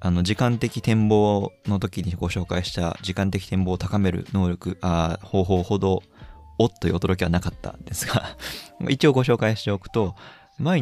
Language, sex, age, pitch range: Japanese, male, 20-39, 90-115 Hz